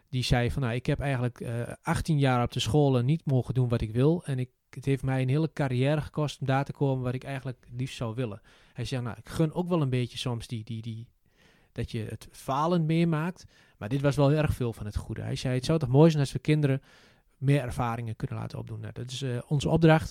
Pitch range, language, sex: 120-145 Hz, Dutch, male